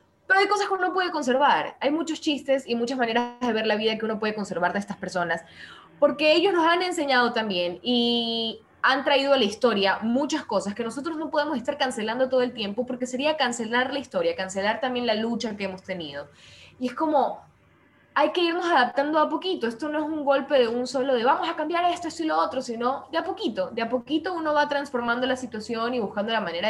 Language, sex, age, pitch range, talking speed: Spanish, female, 10-29, 200-285 Hz, 225 wpm